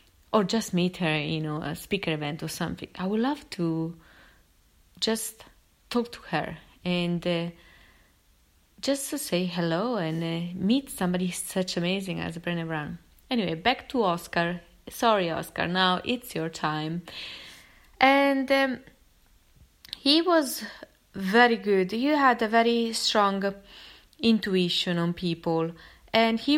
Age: 20-39